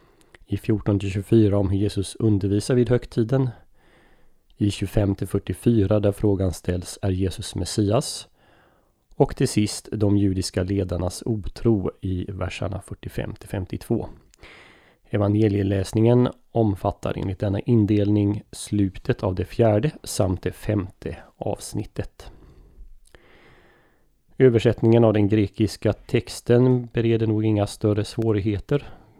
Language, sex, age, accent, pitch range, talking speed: Swedish, male, 30-49, native, 100-115 Hz, 100 wpm